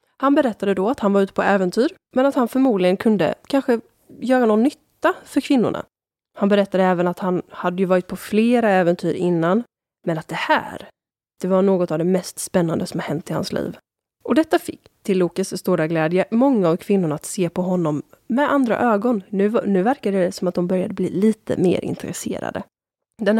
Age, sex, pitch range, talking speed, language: 20-39, female, 180-220 Hz, 205 wpm, Swedish